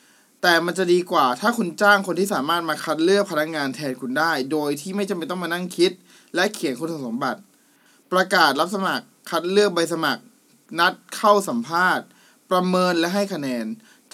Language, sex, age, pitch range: Thai, male, 20-39, 145-210 Hz